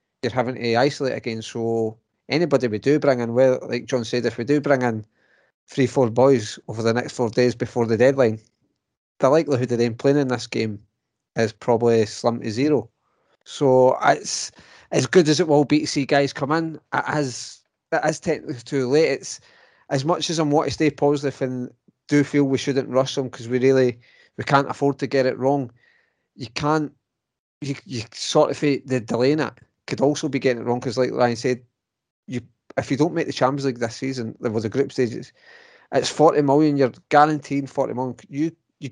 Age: 30-49